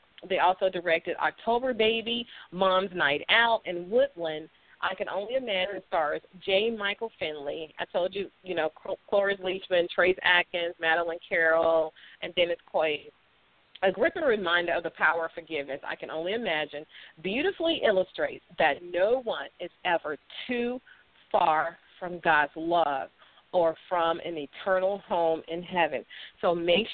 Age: 40-59